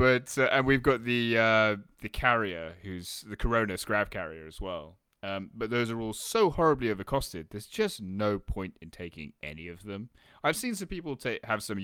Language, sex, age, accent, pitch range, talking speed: English, male, 20-39, British, 90-115 Hz, 205 wpm